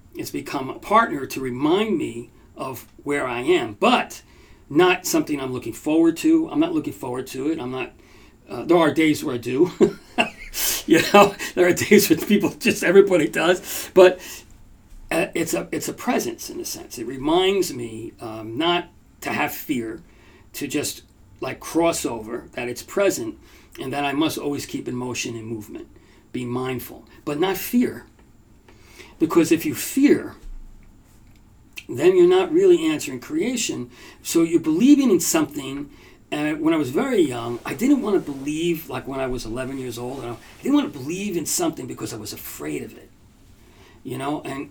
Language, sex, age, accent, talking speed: English, male, 40-59, American, 175 wpm